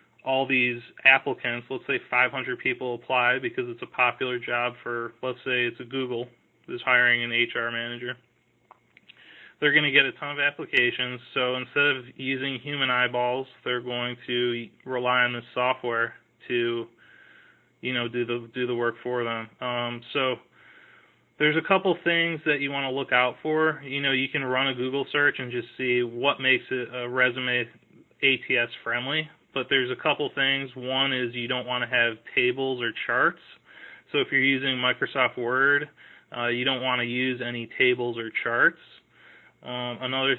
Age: 20-39